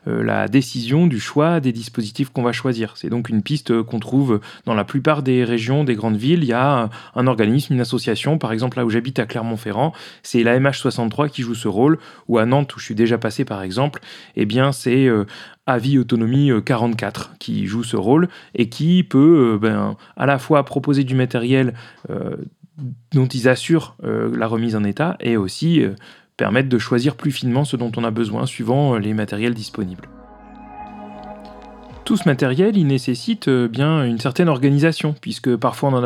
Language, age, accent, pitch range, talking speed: French, 30-49, French, 115-145 Hz, 195 wpm